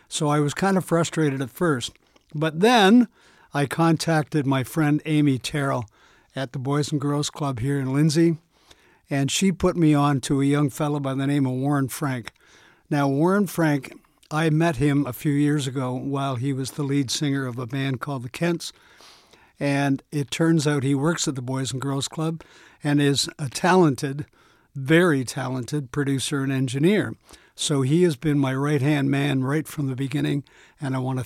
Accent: American